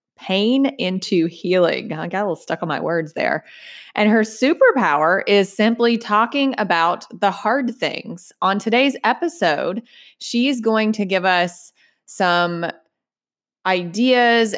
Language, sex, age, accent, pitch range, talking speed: English, female, 20-39, American, 170-225 Hz, 130 wpm